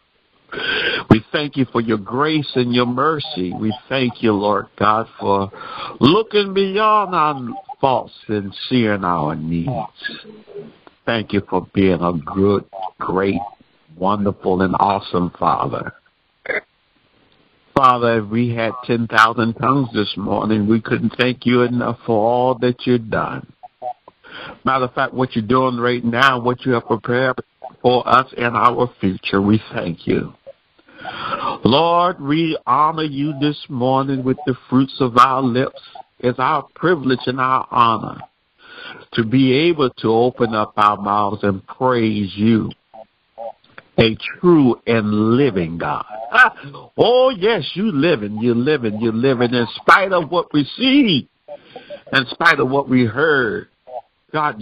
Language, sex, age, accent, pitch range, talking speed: English, male, 60-79, American, 110-145 Hz, 140 wpm